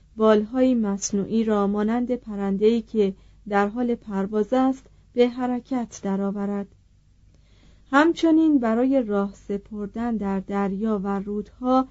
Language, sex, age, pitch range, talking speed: Persian, female, 40-59, 200-245 Hz, 105 wpm